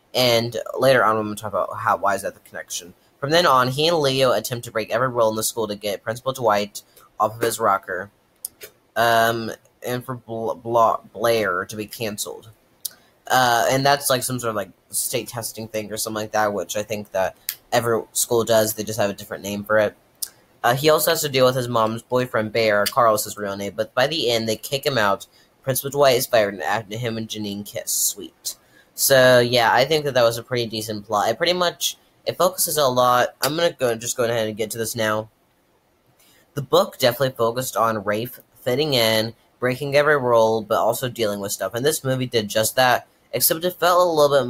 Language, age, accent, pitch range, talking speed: English, 10-29, American, 110-130 Hz, 220 wpm